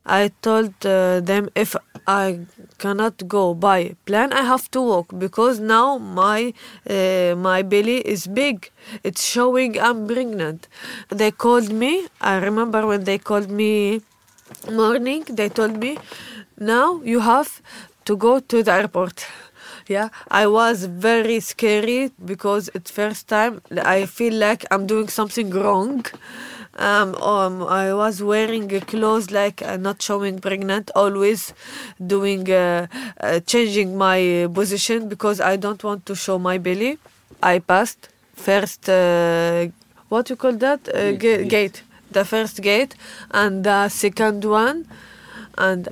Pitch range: 195-225 Hz